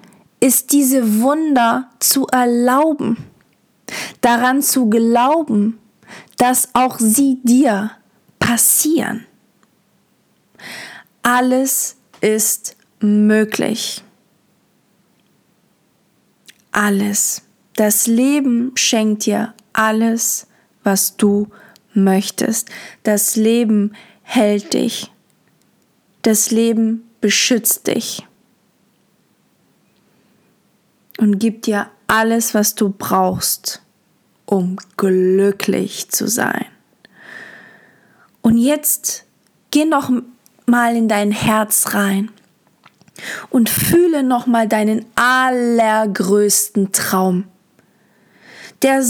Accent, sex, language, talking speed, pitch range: German, female, German, 75 wpm, 205-245 Hz